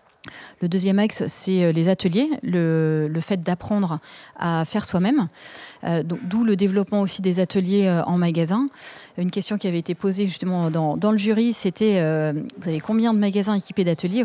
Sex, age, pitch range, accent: female, 30-49, 175-210 Hz, French